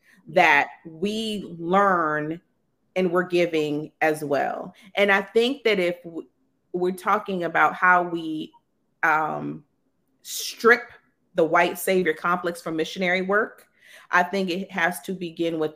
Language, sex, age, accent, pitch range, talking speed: English, female, 40-59, American, 160-190 Hz, 130 wpm